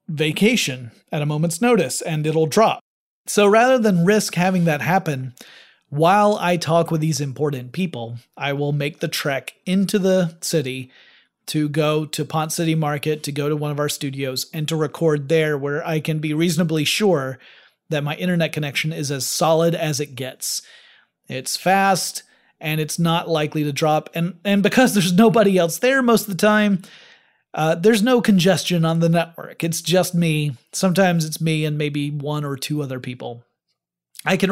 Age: 30-49